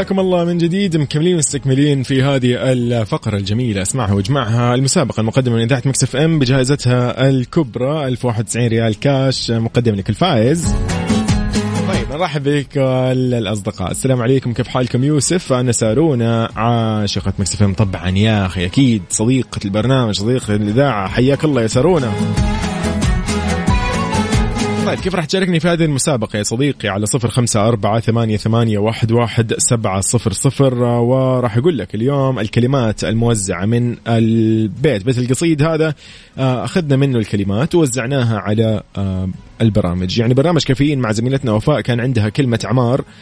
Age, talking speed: 20-39, 125 wpm